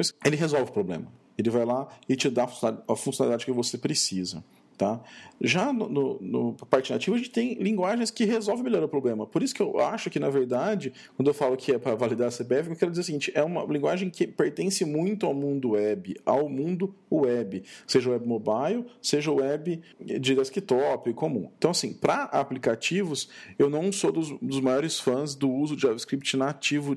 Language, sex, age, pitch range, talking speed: Portuguese, male, 40-59, 125-175 Hz, 195 wpm